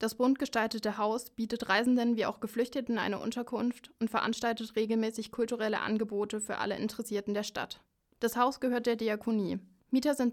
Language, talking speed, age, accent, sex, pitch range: German, 165 wpm, 20-39, German, female, 210-230 Hz